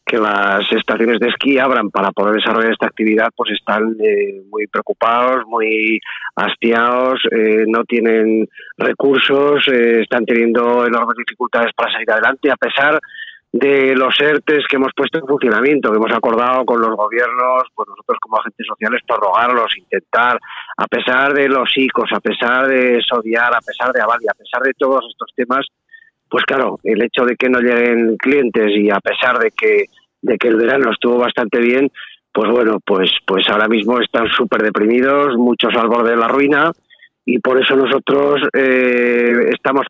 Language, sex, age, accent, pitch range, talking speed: Spanish, male, 30-49, Spanish, 115-140 Hz, 170 wpm